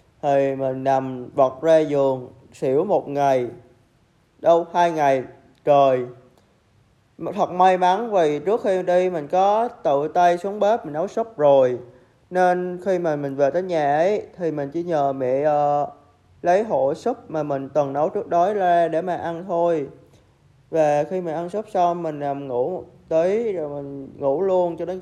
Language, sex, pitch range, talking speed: Vietnamese, male, 135-185 Hz, 180 wpm